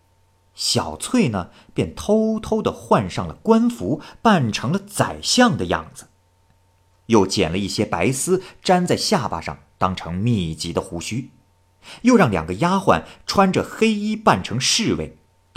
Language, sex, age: Chinese, male, 50-69